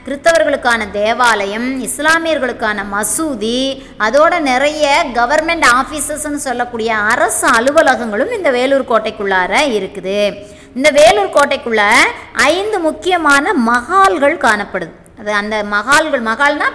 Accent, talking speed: native, 95 wpm